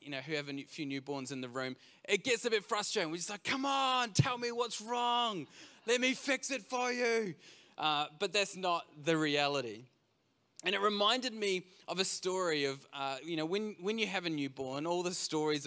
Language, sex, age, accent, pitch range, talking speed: English, male, 20-39, Australian, 140-195 Hz, 215 wpm